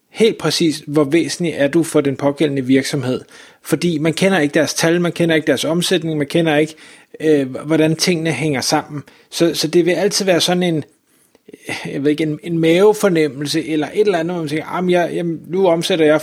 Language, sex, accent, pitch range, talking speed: Danish, male, native, 145-165 Hz, 195 wpm